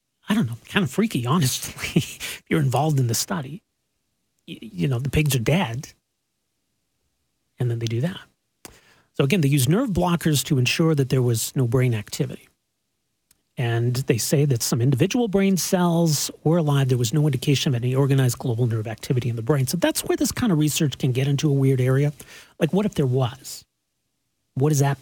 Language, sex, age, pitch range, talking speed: English, male, 40-59, 125-170 Hz, 200 wpm